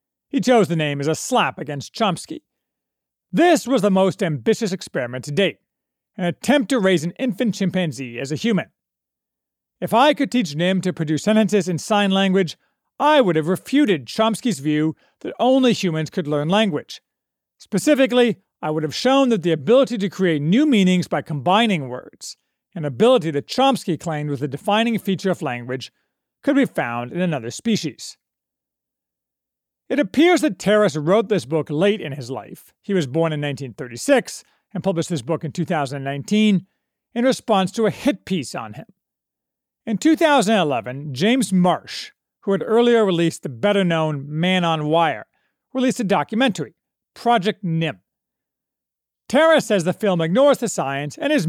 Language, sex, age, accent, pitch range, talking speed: English, male, 40-59, American, 155-230 Hz, 160 wpm